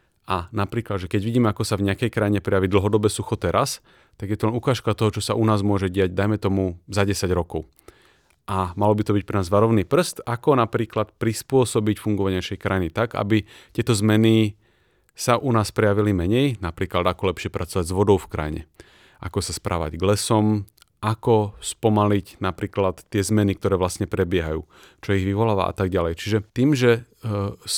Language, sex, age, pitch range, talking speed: Slovak, male, 30-49, 100-120 Hz, 185 wpm